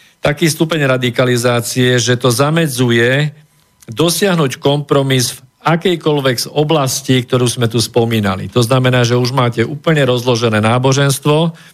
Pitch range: 120-140 Hz